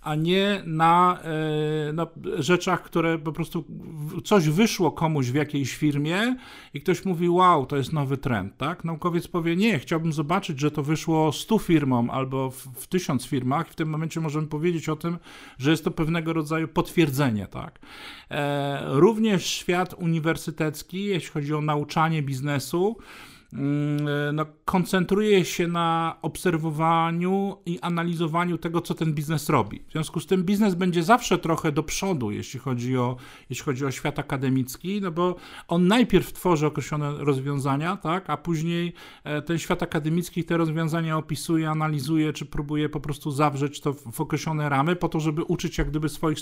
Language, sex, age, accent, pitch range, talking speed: Polish, male, 50-69, native, 150-175 Hz, 160 wpm